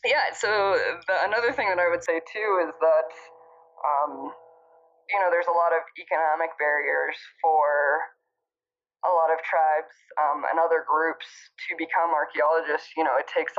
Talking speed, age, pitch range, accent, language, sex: 165 wpm, 20-39, 150-170 Hz, American, English, female